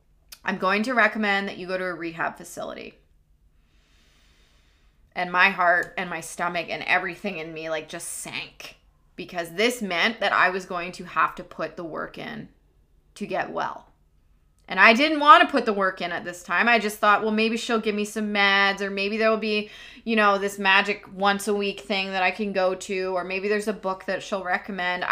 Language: English